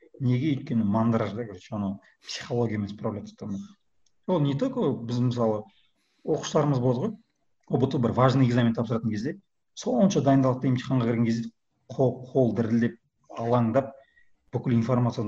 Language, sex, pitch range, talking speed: Russian, male, 110-130 Hz, 85 wpm